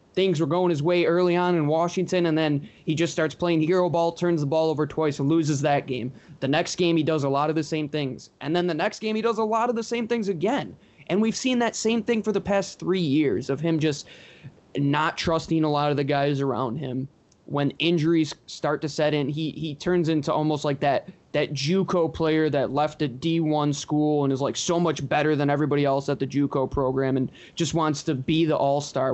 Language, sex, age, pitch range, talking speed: English, male, 20-39, 140-170 Hz, 240 wpm